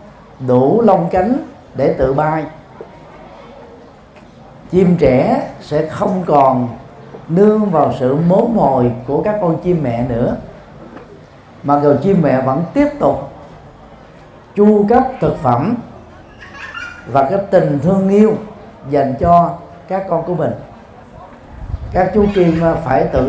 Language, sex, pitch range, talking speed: Vietnamese, male, 135-190 Hz, 125 wpm